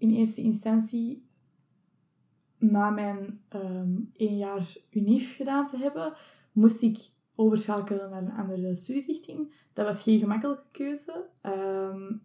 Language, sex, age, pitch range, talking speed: Dutch, female, 20-39, 205-235 Hz, 120 wpm